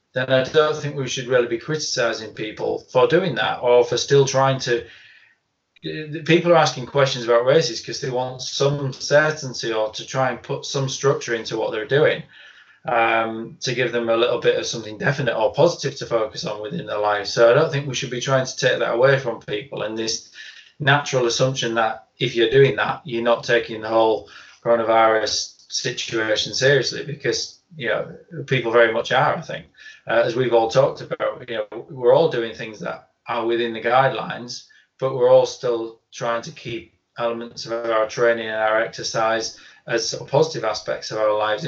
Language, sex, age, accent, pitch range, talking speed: English, male, 20-39, British, 115-140 Hz, 195 wpm